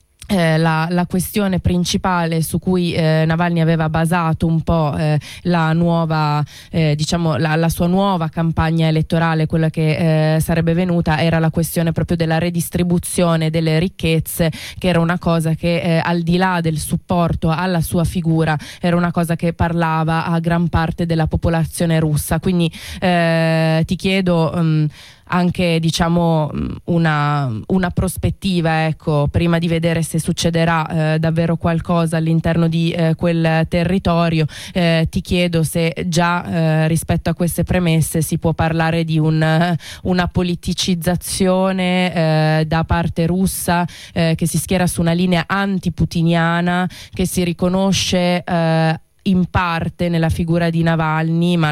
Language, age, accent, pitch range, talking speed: Italian, 20-39, native, 160-175 Hz, 145 wpm